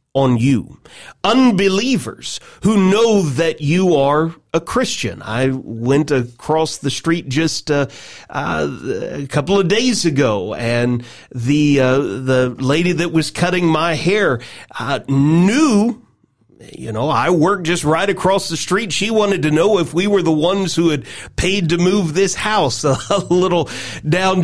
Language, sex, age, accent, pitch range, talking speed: English, male, 40-59, American, 145-195 Hz, 155 wpm